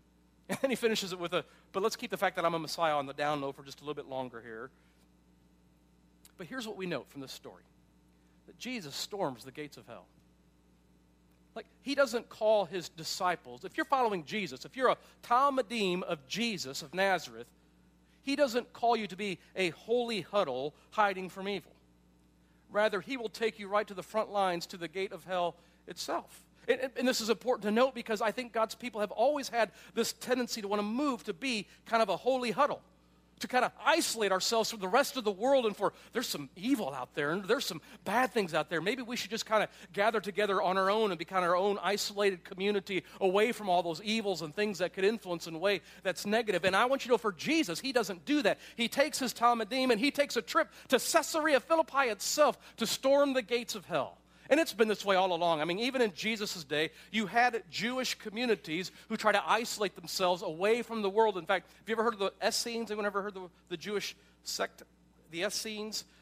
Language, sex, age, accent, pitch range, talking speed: English, male, 40-59, American, 170-230 Hz, 225 wpm